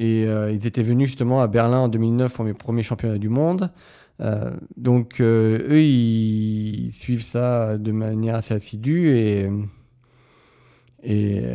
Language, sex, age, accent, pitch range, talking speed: French, male, 40-59, French, 105-125 Hz, 155 wpm